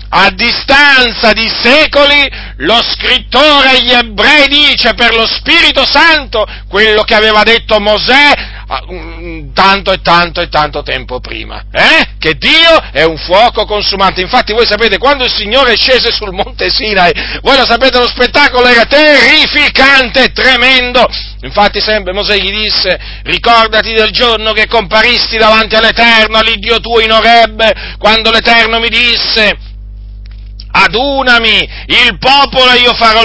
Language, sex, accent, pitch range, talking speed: Italian, male, native, 200-250 Hz, 145 wpm